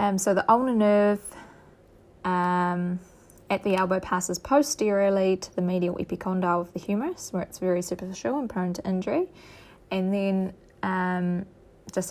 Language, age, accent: English, 20-39, Australian